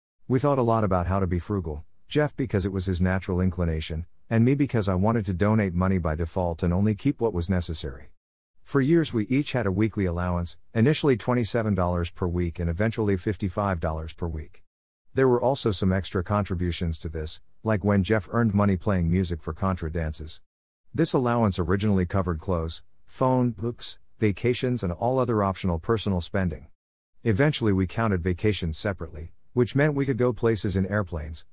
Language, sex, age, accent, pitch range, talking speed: English, male, 50-69, American, 85-115 Hz, 180 wpm